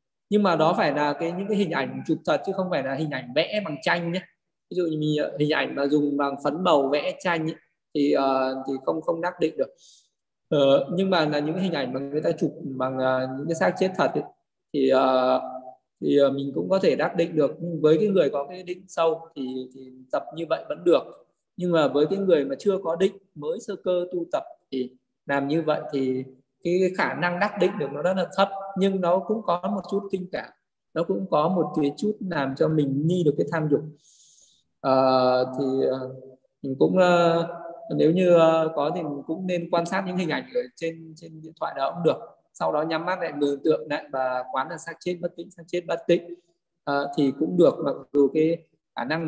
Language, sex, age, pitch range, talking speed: Vietnamese, male, 20-39, 140-180 Hz, 235 wpm